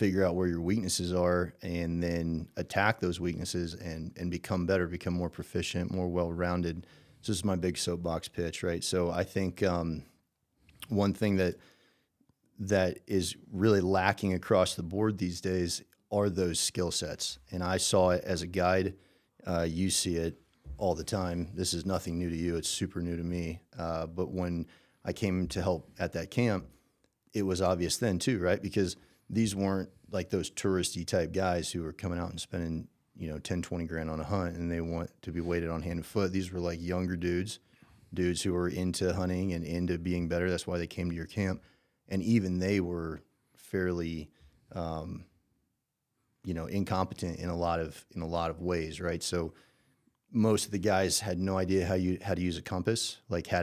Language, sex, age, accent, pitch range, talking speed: English, male, 30-49, American, 85-95 Hz, 200 wpm